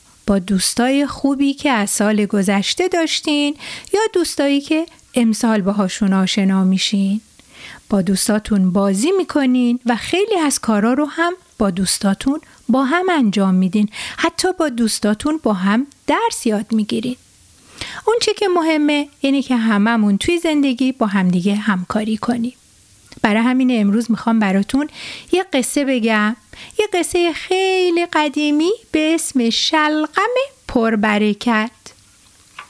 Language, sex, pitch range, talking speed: Persian, female, 215-320 Hz, 125 wpm